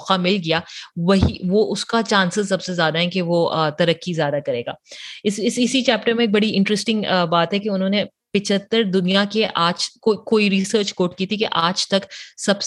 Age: 30-49